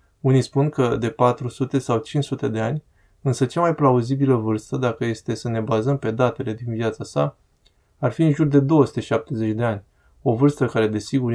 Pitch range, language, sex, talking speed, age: 110-135 Hz, Romanian, male, 190 wpm, 20-39